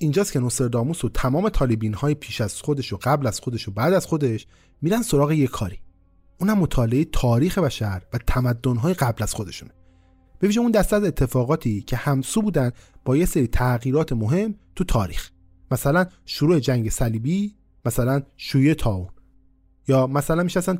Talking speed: 165 wpm